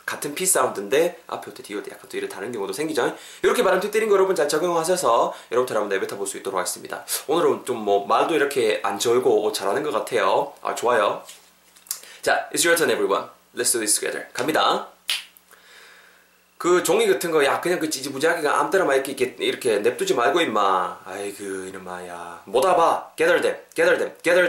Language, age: Korean, 20-39